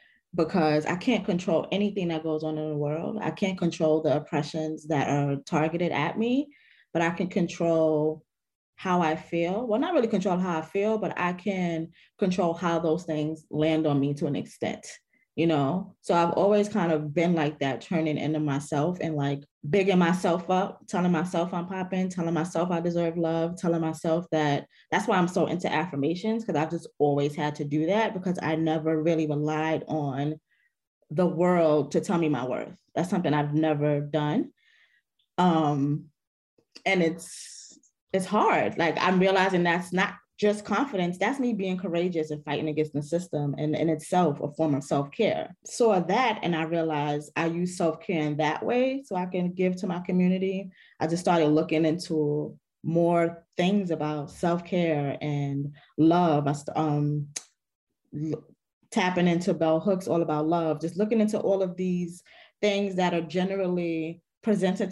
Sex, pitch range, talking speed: female, 155-185 Hz, 175 wpm